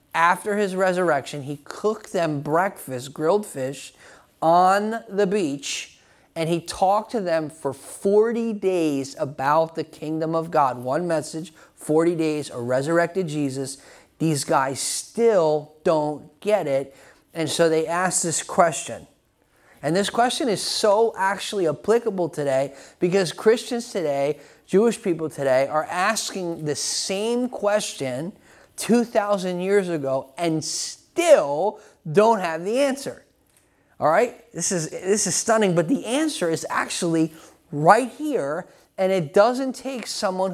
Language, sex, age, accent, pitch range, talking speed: English, male, 30-49, American, 155-210 Hz, 135 wpm